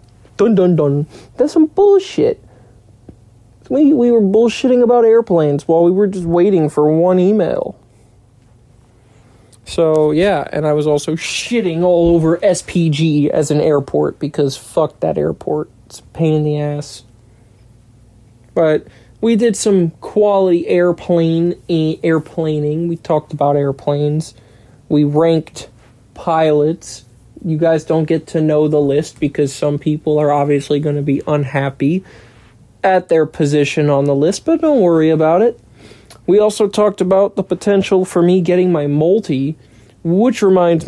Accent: American